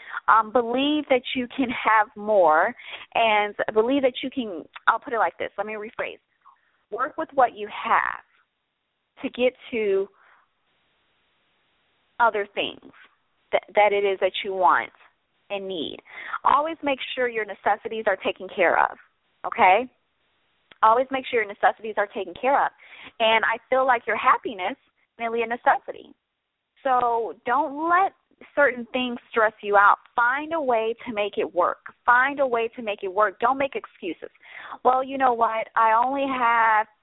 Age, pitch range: 30-49, 210-260 Hz